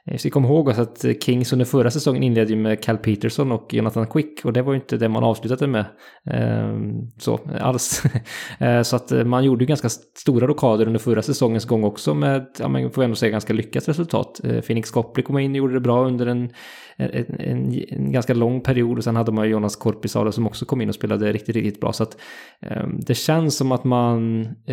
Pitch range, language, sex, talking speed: 110-125 Hz, English, male, 215 wpm